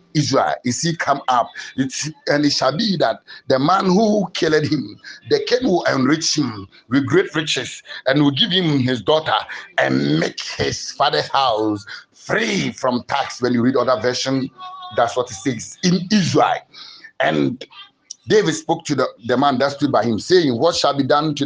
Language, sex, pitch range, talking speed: English, male, 135-160 Hz, 185 wpm